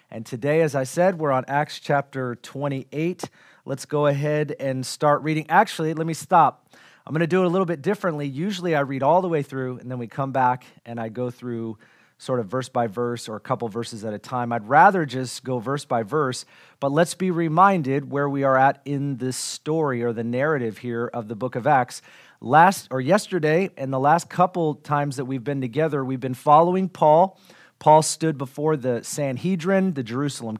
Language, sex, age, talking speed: English, male, 40-59, 210 wpm